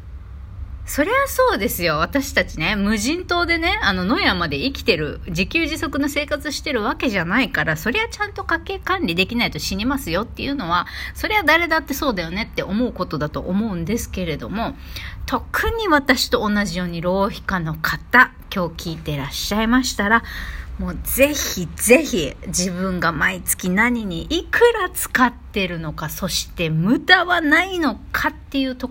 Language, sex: Japanese, female